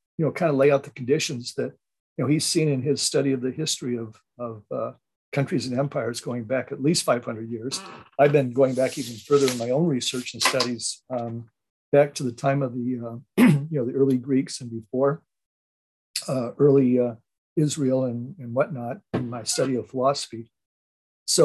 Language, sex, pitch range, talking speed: English, male, 115-145 Hz, 200 wpm